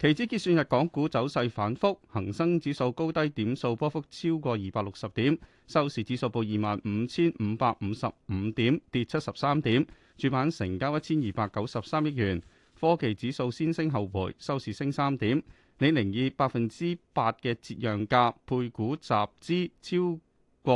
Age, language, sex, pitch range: 30-49, Chinese, male, 115-165 Hz